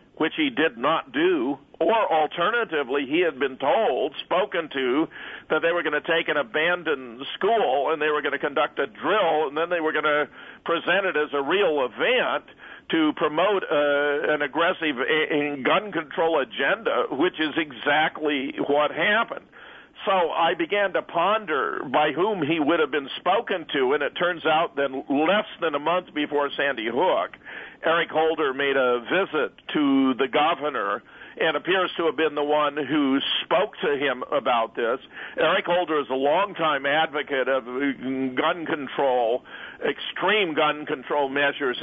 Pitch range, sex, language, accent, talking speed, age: 140-170 Hz, male, English, American, 165 wpm, 50-69